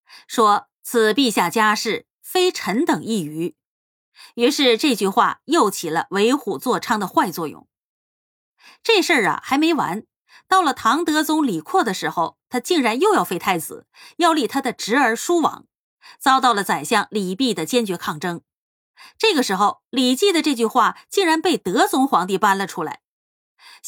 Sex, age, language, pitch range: female, 30-49, Chinese, 195-310 Hz